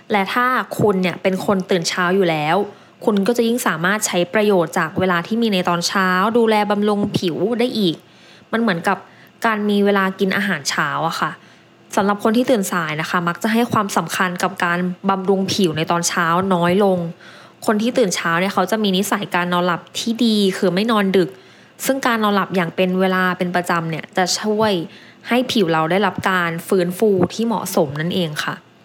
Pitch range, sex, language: 185-220 Hz, female, English